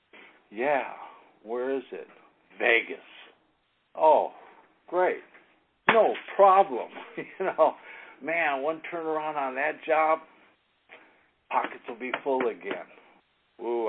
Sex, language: male, English